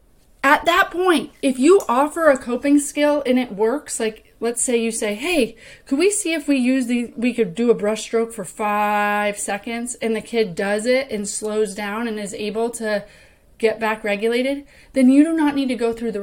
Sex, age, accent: female, 30-49, American